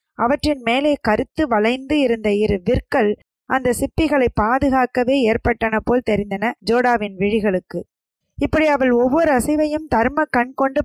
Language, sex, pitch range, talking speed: Tamil, female, 220-275 Hz, 120 wpm